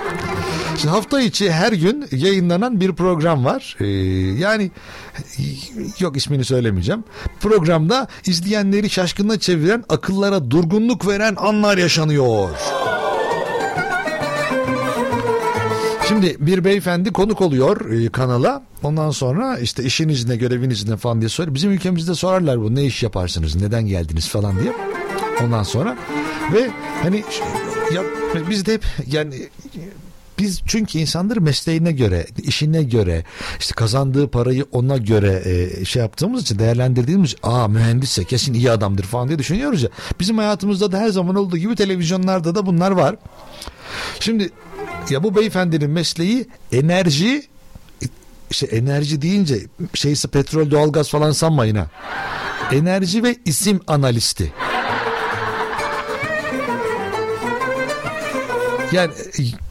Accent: native